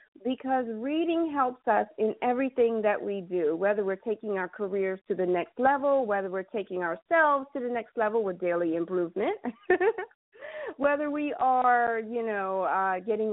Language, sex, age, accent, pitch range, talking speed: English, female, 40-59, American, 195-270 Hz, 160 wpm